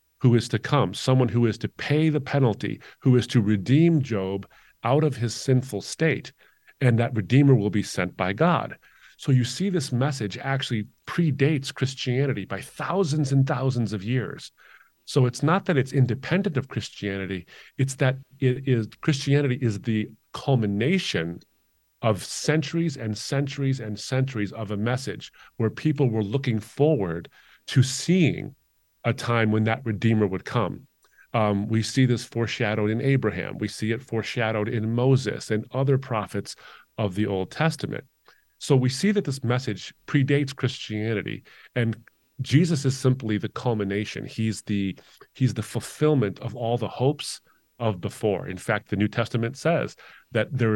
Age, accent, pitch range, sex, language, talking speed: 40-59, American, 110-140 Hz, male, English, 160 wpm